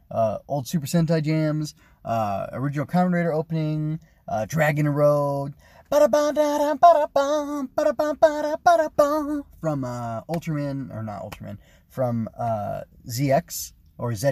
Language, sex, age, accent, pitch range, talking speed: English, male, 20-39, American, 120-180 Hz, 105 wpm